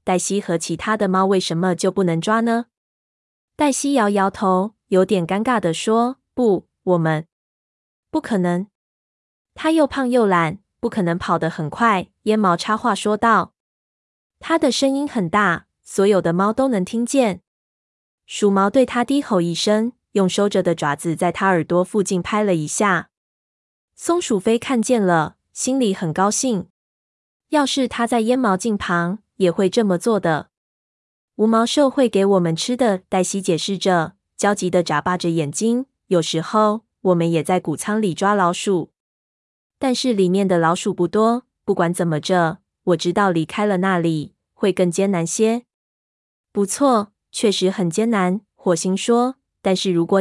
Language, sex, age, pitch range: Chinese, female, 20-39, 175-225 Hz